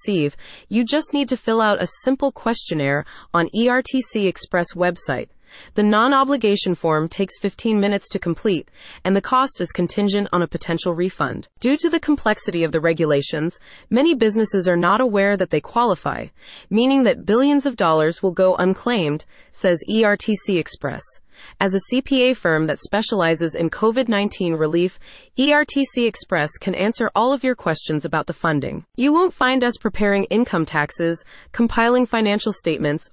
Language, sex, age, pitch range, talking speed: English, female, 30-49, 170-230 Hz, 155 wpm